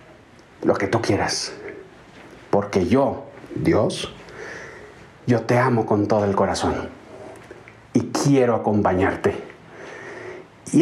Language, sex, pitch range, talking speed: Spanish, male, 110-150 Hz, 100 wpm